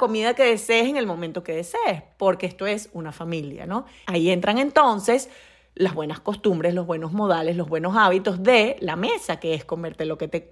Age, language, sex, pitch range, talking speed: 30-49, Spanish, female, 185-245 Hz, 200 wpm